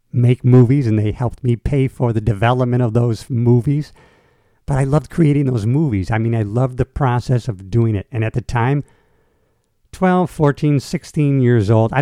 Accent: American